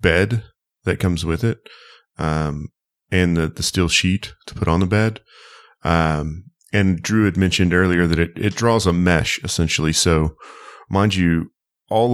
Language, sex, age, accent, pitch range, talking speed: English, male, 30-49, American, 80-95 Hz, 165 wpm